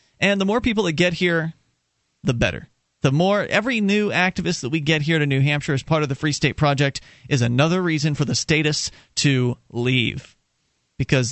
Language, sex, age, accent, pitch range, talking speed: English, male, 30-49, American, 140-215 Hz, 195 wpm